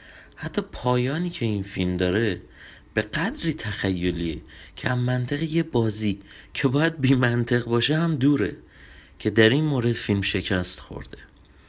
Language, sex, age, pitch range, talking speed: Persian, male, 30-49, 90-120 Hz, 140 wpm